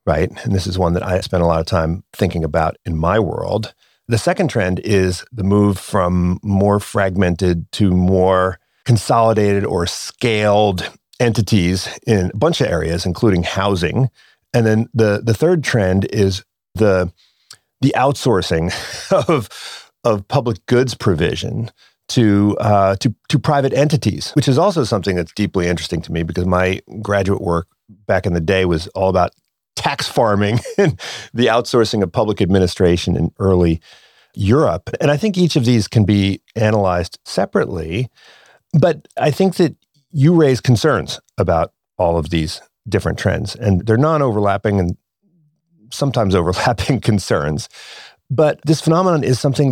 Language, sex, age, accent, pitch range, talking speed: English, male, 40-59, American, 90-120 Hz, 150 wpm